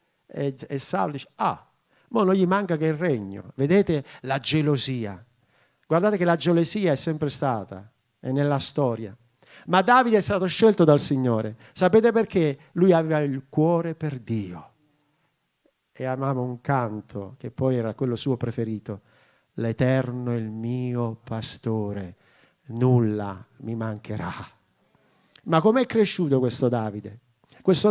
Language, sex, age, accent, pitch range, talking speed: Italian, male, 50-69, native, 120-185 Hz, 135 wpm